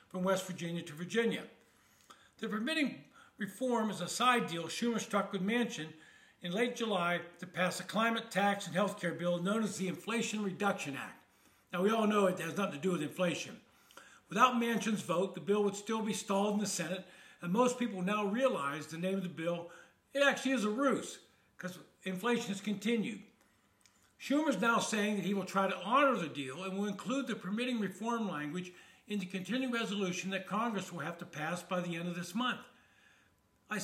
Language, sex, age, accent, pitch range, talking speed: English, male, 60-79, American, 180-225 Hz, 200 wpm